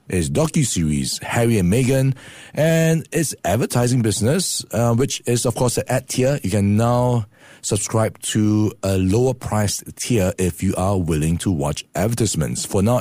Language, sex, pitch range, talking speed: English, male, 100-130 Hz, 160 wpm